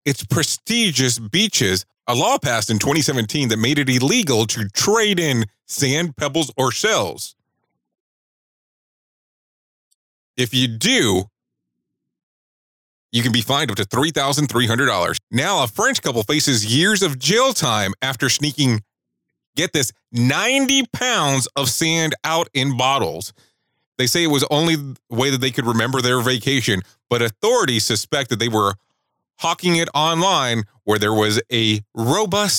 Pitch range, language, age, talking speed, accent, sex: 115-170 Hz, English, 30-49, 145 wpm, American, male